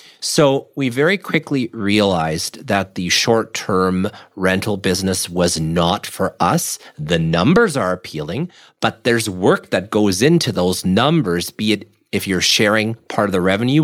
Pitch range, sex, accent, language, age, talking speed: 95-125 Hz, male, American, English, 40-59, 150 wpm